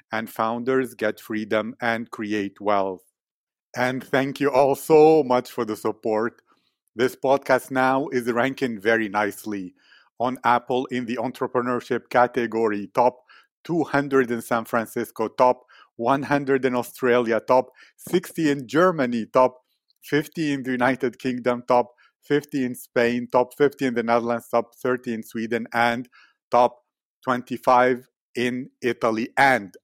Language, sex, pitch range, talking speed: English, male, 115-135 Hz, 135 wpm